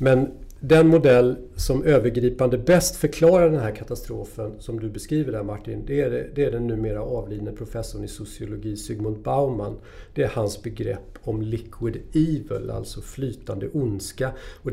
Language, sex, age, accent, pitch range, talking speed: Swedish, male, 40-59, native, 110-150 Hz, 160 wpm